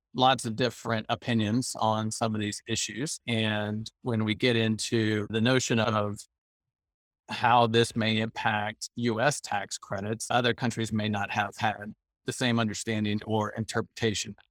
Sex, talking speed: male, 145 wpm